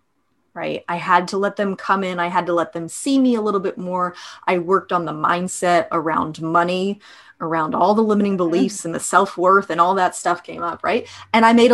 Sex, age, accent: female, 30-49, American